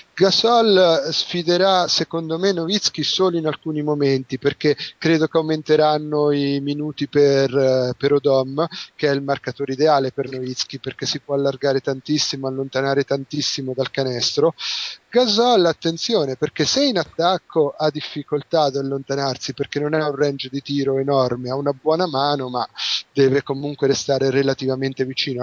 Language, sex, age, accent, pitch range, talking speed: Italian, male, 30-49, native, 130-155 Hz, 145 wpm